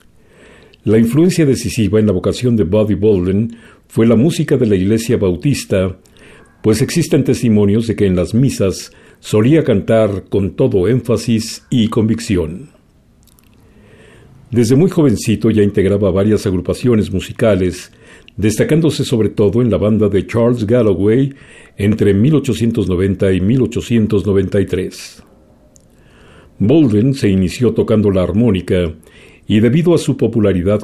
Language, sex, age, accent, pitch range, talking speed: Spanish, male, 50-69, Mexican, 100-125 Hz, 125 wpm